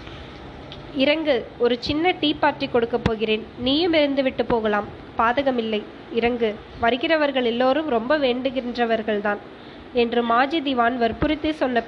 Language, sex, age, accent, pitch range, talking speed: Tamil, female, 20-39, native, 235-290 Hz, 110 wpm